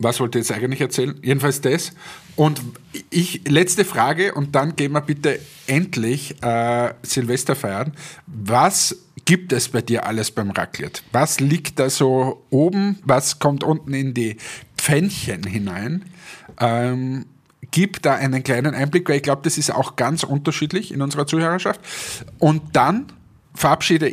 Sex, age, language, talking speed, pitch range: male, 50-69, German, 150 wpm, 120-155 Hz